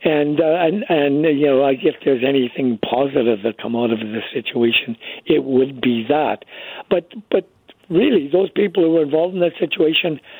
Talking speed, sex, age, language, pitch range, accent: 180 wpm, male, 60-79, English, 130-165 Hz, American